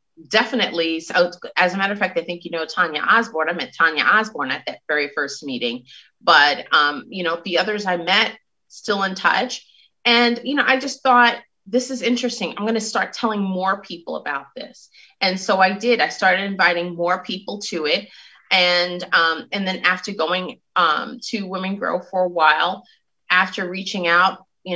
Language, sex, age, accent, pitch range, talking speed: English, female, 30-49, American, 175-230 Hz, 190 wpm